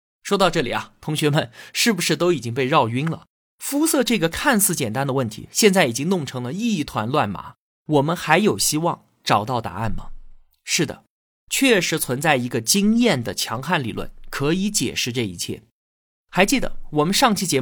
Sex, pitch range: male, 120-195 Hz